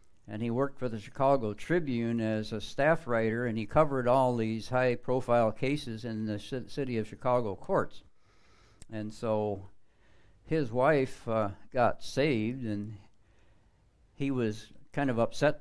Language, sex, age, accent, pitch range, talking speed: English, male, 60-79, American, 110-130 Hz, 145 wpm